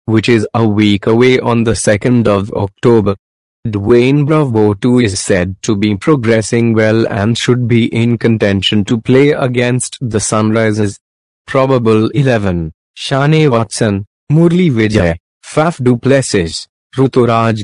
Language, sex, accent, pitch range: Hindi, male, native, 105-125 Hz